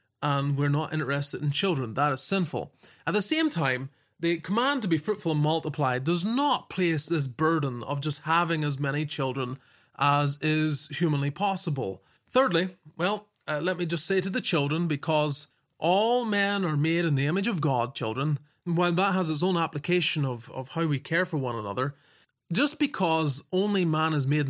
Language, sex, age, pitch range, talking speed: English, male, 30-49, 145-180 Hz, 185 wpm